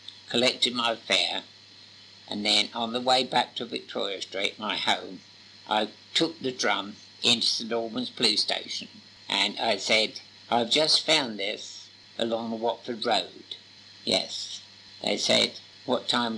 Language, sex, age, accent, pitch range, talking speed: English, male, 60-79, British, 100-125 Hz, 140 wpm